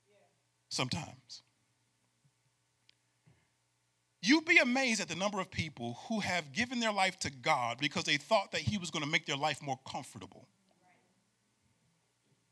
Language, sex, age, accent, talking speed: English, male, 40-59, American, 140 wpm